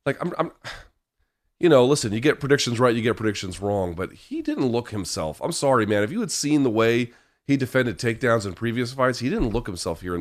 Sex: male